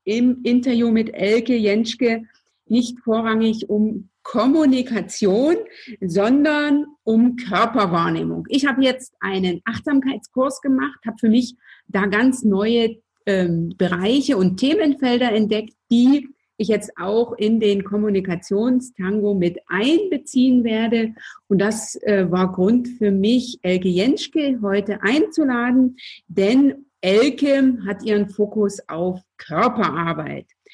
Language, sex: German, female